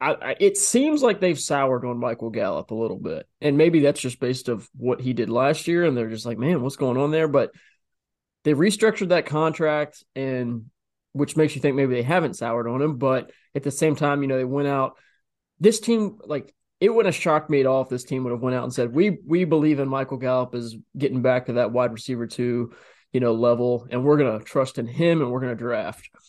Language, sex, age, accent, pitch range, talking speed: English, male, 20-39, American, 125-150 Hz, 240 wpm